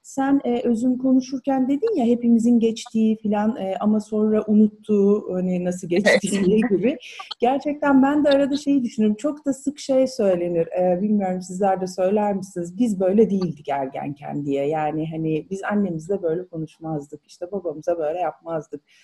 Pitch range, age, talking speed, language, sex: 170-235 Hz, 30-49, 145 wpm, Turkish, female